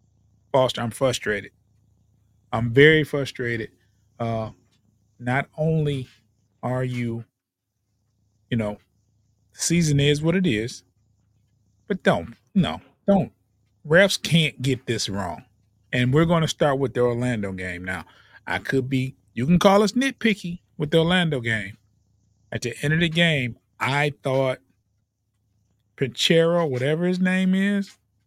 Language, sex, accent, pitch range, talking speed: English, male, American, 105-160 Hz, 135 wpm